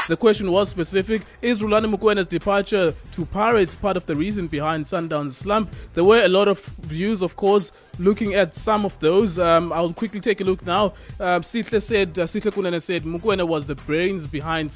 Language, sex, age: English, male, 20-39